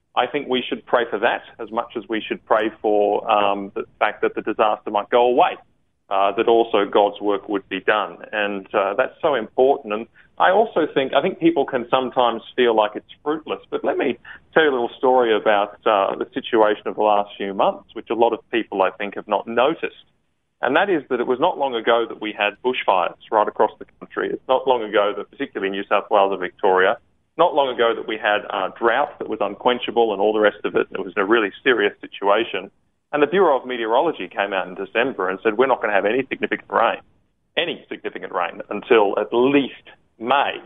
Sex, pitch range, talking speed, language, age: male, 100-125 Hz, 230 wpm, English, 30-49